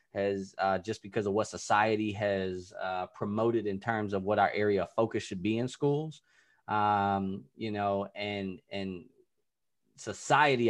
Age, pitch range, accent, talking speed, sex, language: 20-39, 100-115 Hz, American, 155 wpm, male, English